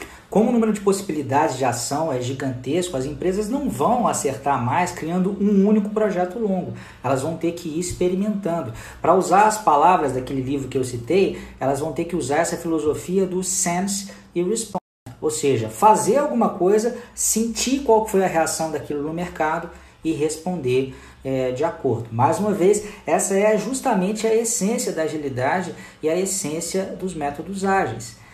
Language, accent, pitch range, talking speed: Portuguese, Brazilian, 150-210 Hz, 170 wpm